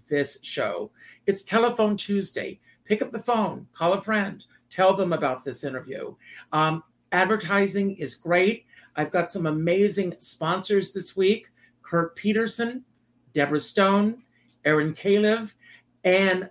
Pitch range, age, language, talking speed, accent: 140-190 Hz, 50-69, English, 125 wpm, American